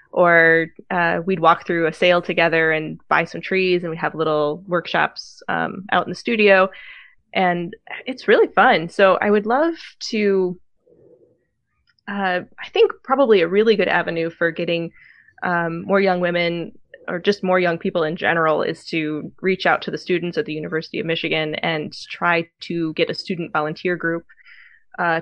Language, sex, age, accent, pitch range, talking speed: English, female, 20-39, American, 165-195 Hz, 175 wpm